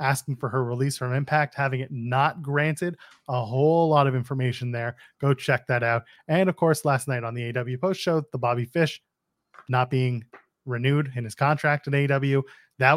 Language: English